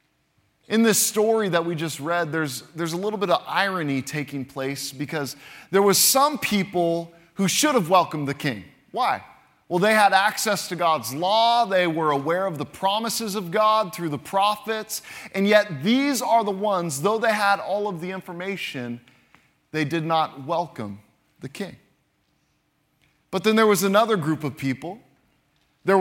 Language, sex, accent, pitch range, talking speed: English, male, American, 150-210 Hz, 170 wpm